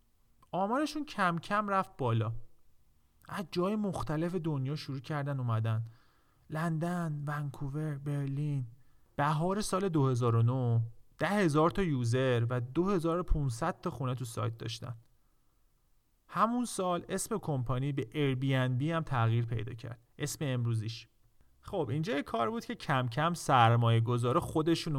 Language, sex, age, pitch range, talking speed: Persian, male, 40-59, 120-170 Hz, 125 wpm